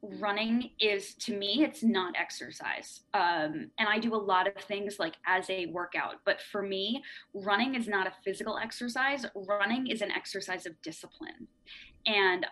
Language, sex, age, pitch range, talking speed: English, female, 20-39, 185-220 Hz, 170 wpm